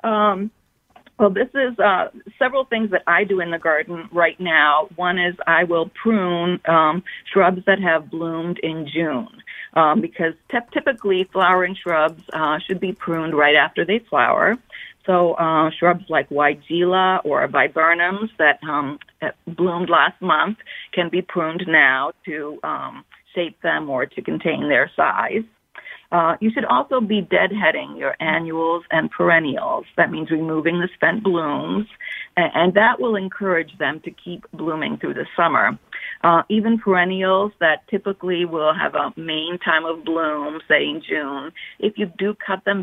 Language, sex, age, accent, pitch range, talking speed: English, female, 50-69, American, 160-205 Hz, 160 wpm